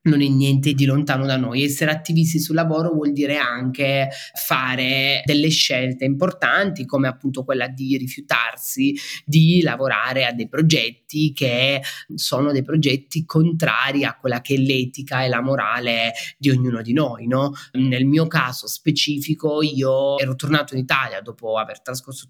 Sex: male